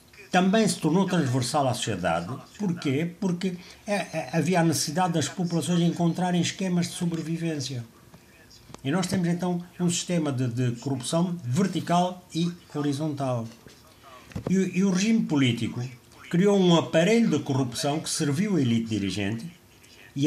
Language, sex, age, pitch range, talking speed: Portuguese, male, 60-79, 115-170 Hz, 140 wpm